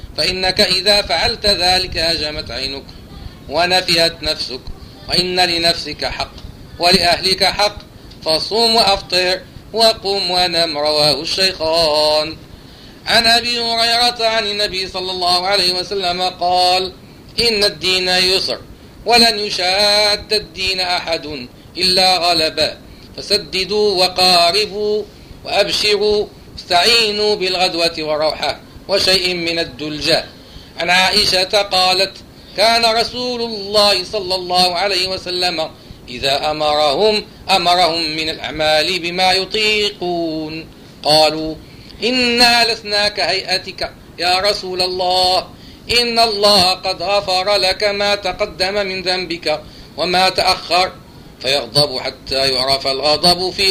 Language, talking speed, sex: Arabic, 95 wpm, male